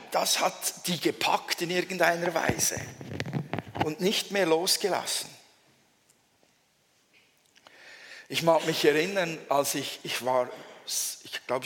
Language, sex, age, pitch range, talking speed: German, male, 50-69, 135-160 Hz, 110 wpm